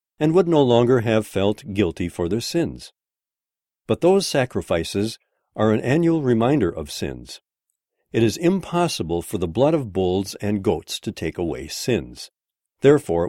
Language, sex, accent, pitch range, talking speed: English, male, American, 90-135 Hz, 155 wpm